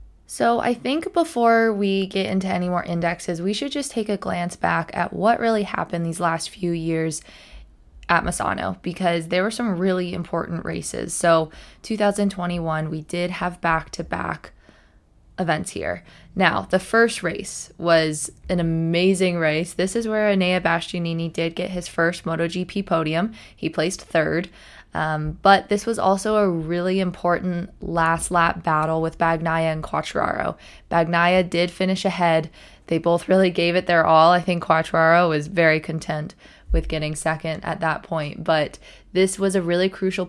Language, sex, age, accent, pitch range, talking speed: English, female, 20-39, American, 165-190 Hz, 160 wpm